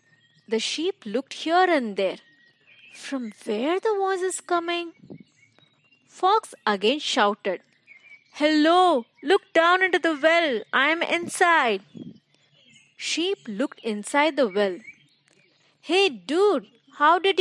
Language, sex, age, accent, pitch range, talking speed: English, female, 30-49, Indian, 210-330 Hz, 115 wpm